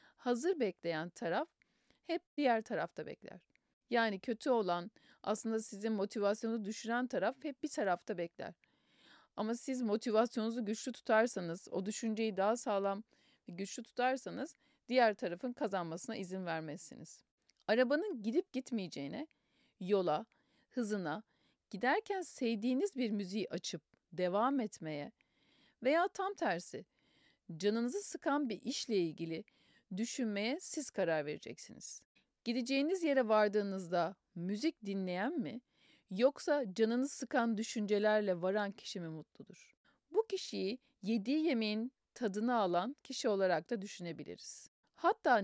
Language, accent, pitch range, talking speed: Turkish, native, 195-255 Hz, 110 wpm